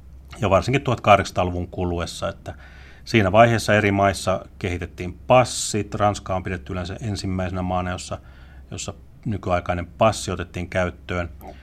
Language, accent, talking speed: Finnish, native, 120 wpm